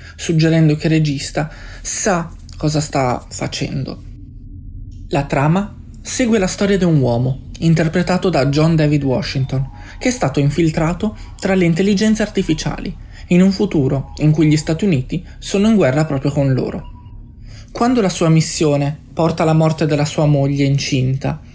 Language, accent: Italian, native